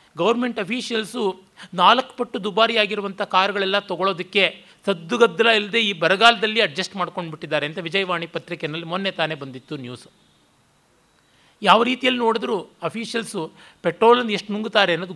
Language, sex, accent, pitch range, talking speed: Kannada, male, native, 165-220 Hz, 120 wpm